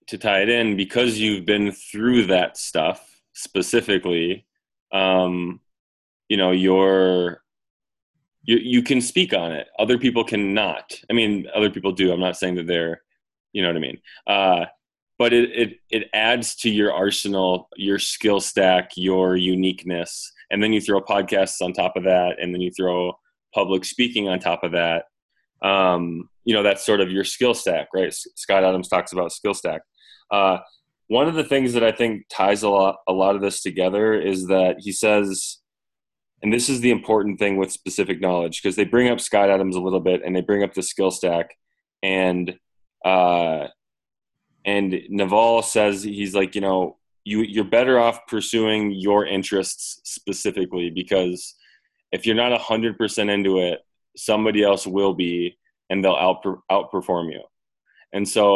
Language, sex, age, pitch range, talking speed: English, male, 20-39, 90-110 Hz, 175 wpm